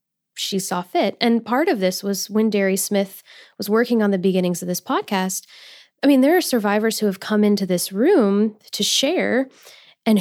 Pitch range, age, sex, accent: 195-235 Hz, 10-29, female, American